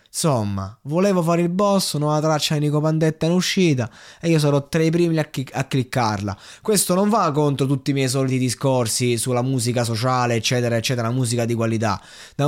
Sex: male